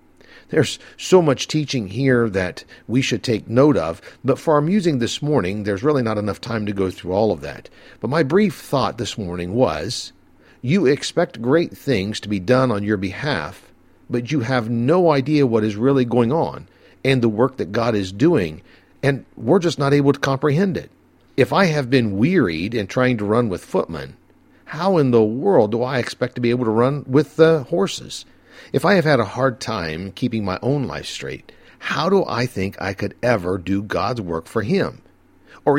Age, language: 50-69, English